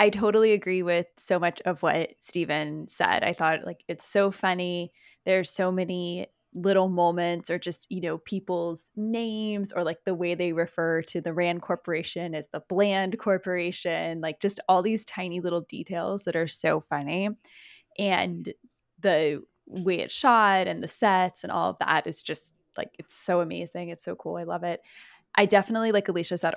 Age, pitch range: 10-29, 165-200 Hz